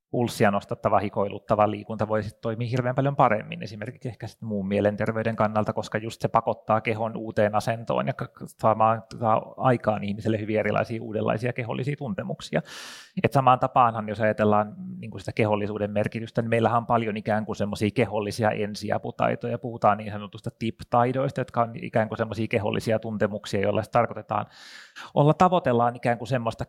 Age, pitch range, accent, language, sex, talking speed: 30-49, 105-120 Hz, native, Finnish, male, 150 wpm